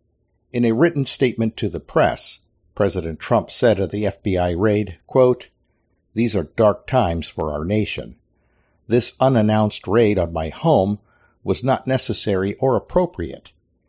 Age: 50-69